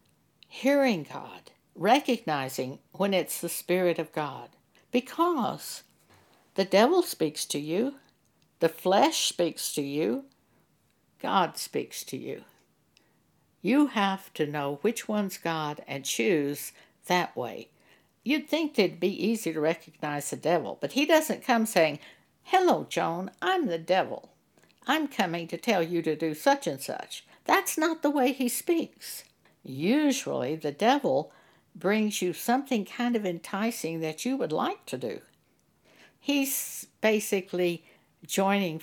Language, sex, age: English, female, 60-79